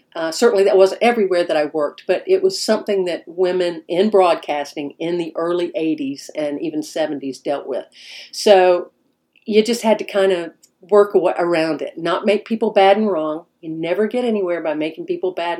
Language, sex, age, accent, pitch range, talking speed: English, female, 50-69, American, 170-230 Hz, 190 wpm